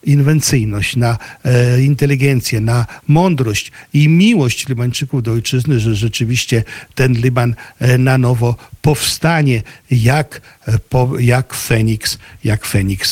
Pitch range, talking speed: 120-140 Hz, 120 wpm